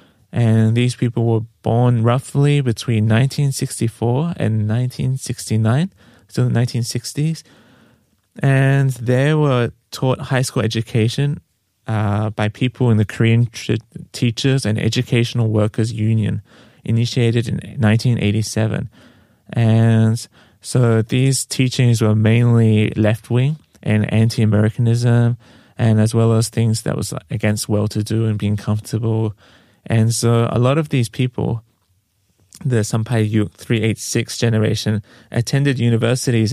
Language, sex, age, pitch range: Korean, male, 20-39, 110-125 Hz